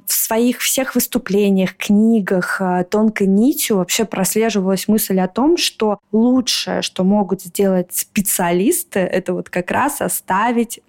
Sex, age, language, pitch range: female, 20-39, Russian, 190-225 Hz